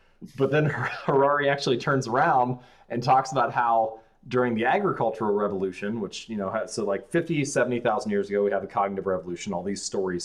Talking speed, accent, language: 180 wpm, American, English